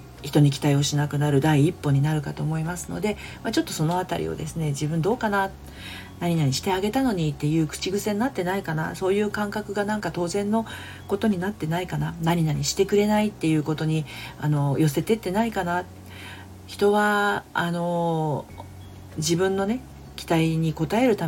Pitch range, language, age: 140-195 Hz, Japanese, 40-59